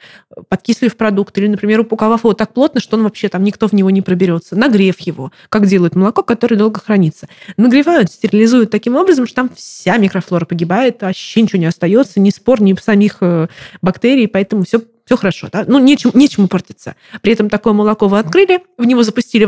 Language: Russian